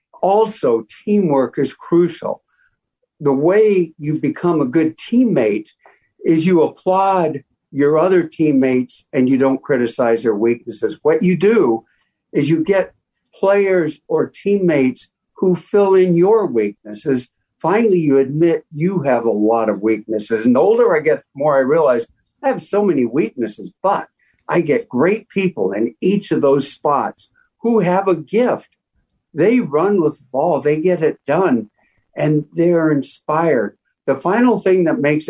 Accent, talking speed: American, 155 wpm